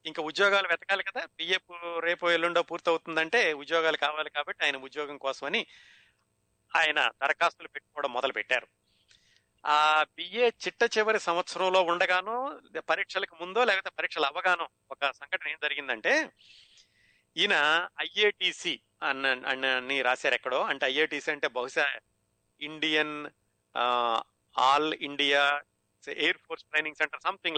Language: Telugu